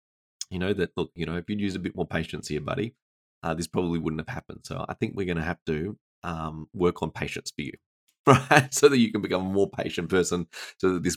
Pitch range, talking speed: 85-100 Hz, 255 wpm